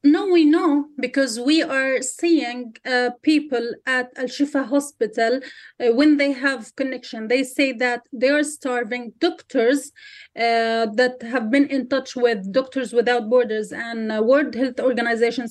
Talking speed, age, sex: 150 wpm, 30-49, female